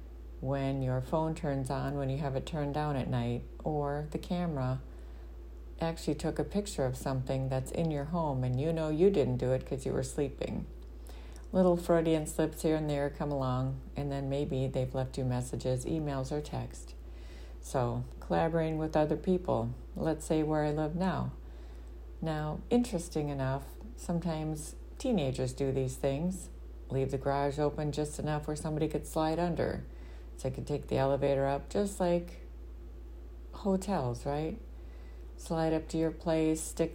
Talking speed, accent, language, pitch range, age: 165 wpm, American, English, 120-160 Hz, 50-69